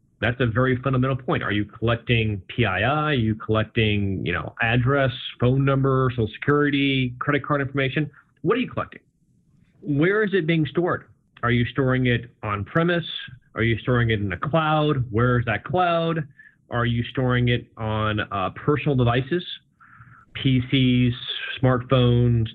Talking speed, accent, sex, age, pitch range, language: 150 wpm, American, male, 30-49, 115-145 Hz, English